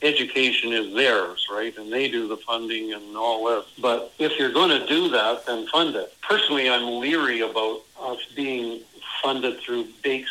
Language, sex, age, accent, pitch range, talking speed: English, male, 60-79, American, 115-150 Hz, 180 wpm